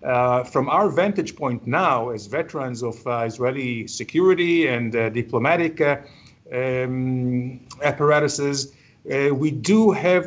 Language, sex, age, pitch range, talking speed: English, male, 50-69, 130-160 Hz, 130 wpm